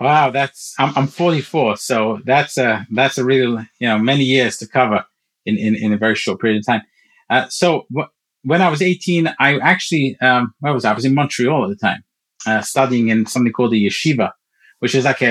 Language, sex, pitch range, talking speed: English, male, 110-135 Hz, 220 wpm